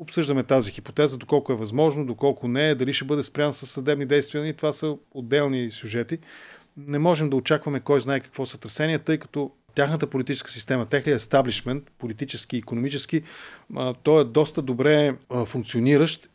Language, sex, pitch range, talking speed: Bulgarian, male, 125-150 Hz, 160 wpm